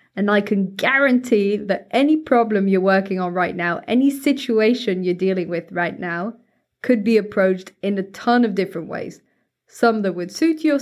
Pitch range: 180-235 Hz